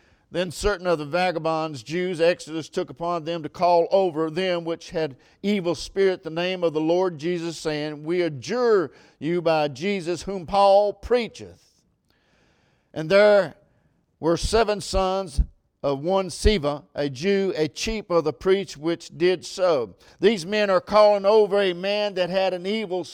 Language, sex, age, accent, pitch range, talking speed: English, male, 50-69, American, 165-210 Hz, 160 wpm